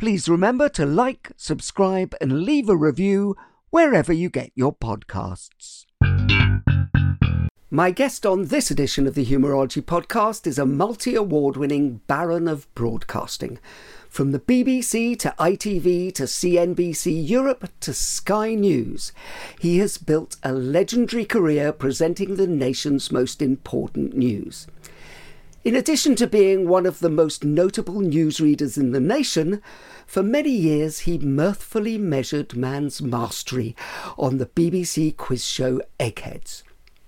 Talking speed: 130 wpm